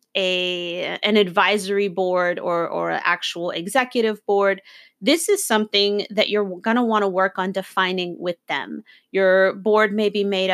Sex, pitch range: female, 190-225 Hz